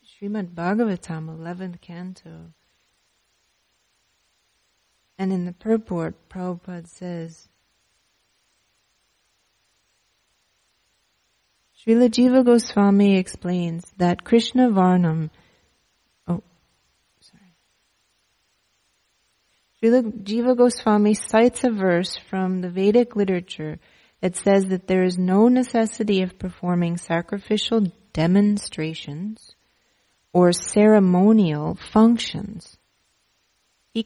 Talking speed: 80 wpm